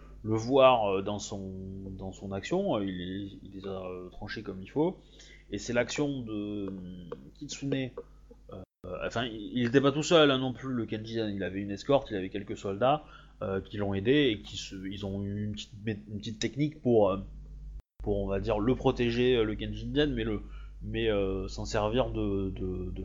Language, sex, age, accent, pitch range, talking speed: French, male, 20-39, French, 95-120 Hz, 195 wpm